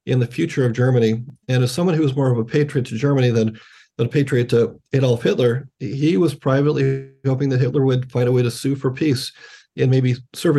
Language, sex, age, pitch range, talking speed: English, male, 40-59, 120-140 Hz, 225 wpm